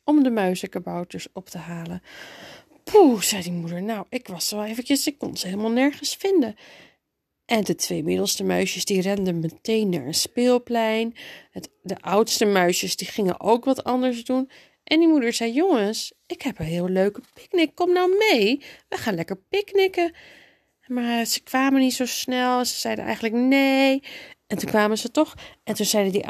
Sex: female